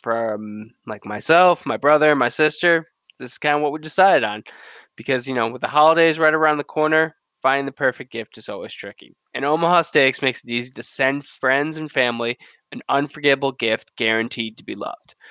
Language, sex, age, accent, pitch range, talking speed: English, male, 20-39, American, 125-155 Hz, 195 wpm